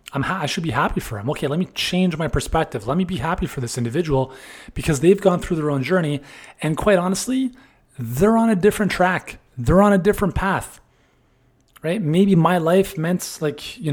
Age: 30-49